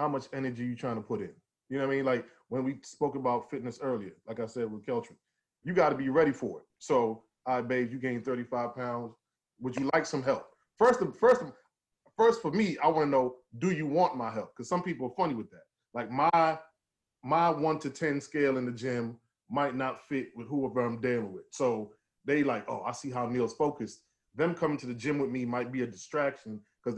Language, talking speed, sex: English, 240 wpm, male